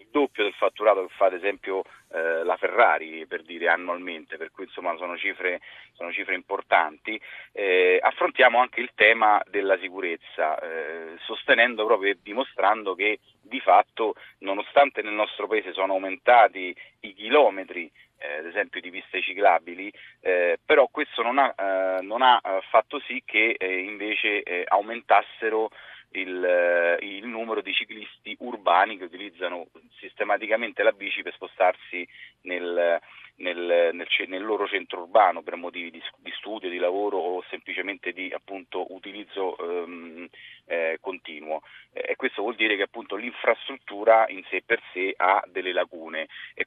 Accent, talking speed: native, 150 wpm